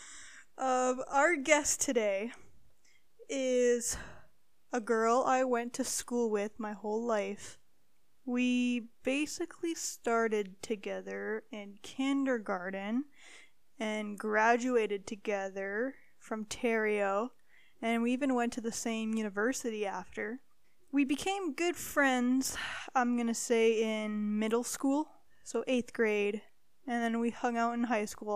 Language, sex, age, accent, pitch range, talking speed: English, female, 10-29, American, 215-265 Hz, 120 wpm